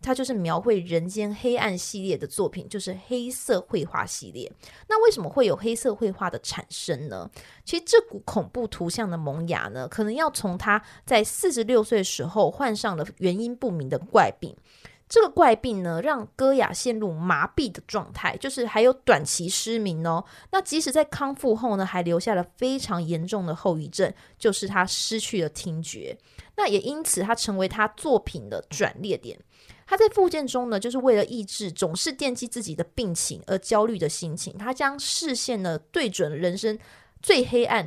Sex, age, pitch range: female, 20-39, 180-250 Hz